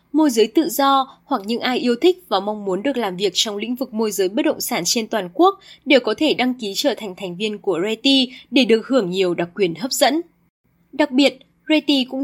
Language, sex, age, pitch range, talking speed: Vietnamese, female, 20-39, 205-290 Hz, 240 wpm